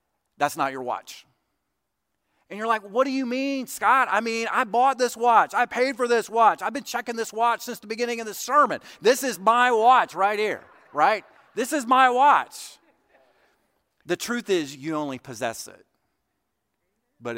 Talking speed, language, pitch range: 185 wpm, English, 150-240 Hz